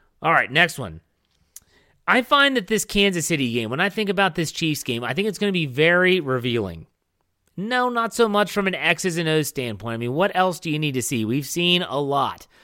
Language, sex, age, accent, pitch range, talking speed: English, male, 30-49, American, 130-195 Hz, 235 wpm